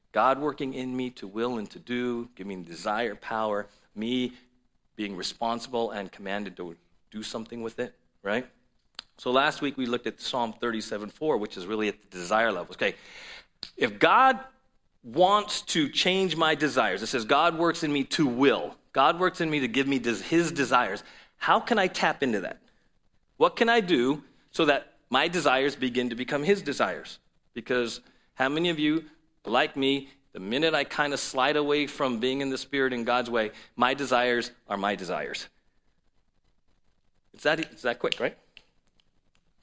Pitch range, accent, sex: 115-150 Hz, American, male